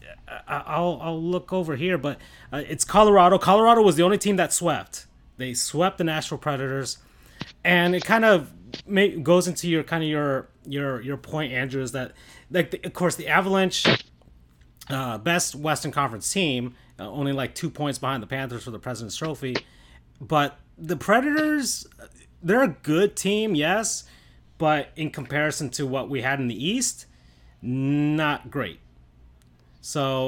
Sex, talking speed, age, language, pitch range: male, 160 wpm, 30-49, English, 105-170 Hz